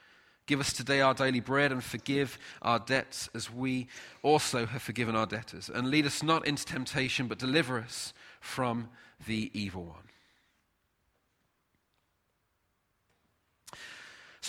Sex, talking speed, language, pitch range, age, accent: male, 130 wpm, English, 120-160 Hz, 30-49, British